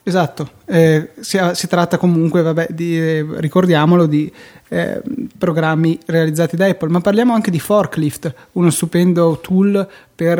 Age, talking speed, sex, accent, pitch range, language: 20-39, 135 wpm, male, native, 155-175 Hz, Italian